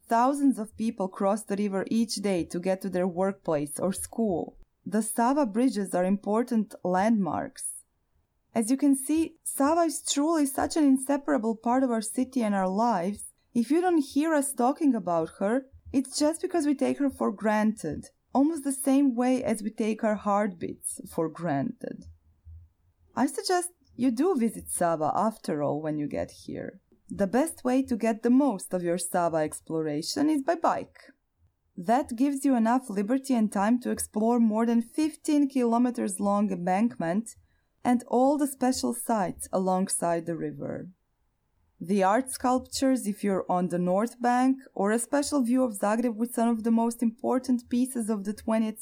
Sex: female